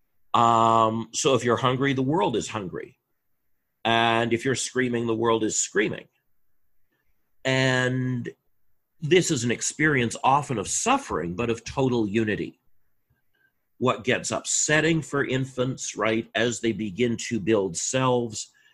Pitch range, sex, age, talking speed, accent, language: 110-135 Hz, male, 50-69, 130 wpm, American, English